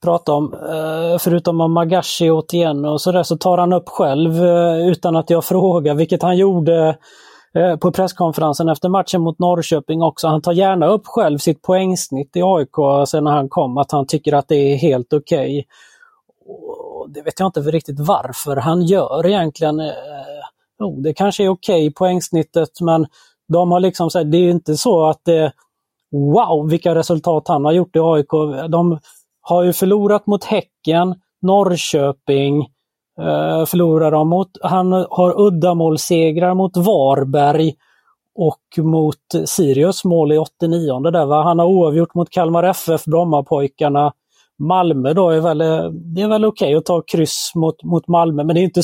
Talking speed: 165 wpm